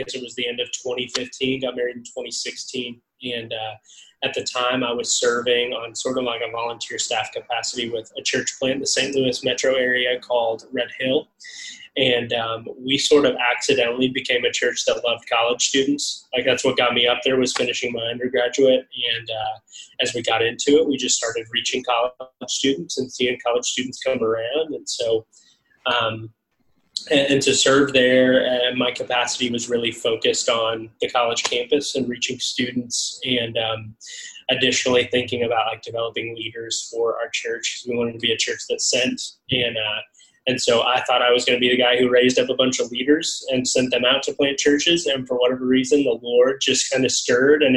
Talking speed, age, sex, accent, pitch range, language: 200 wpm, 20-39, male, American, 120-135 Hz, English